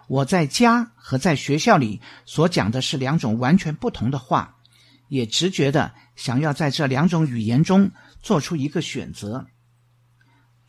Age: 50-69